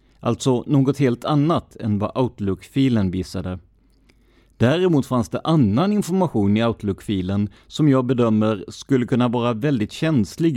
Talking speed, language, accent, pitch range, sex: 130 wpm, Swedish, native, 100-135 Hz, male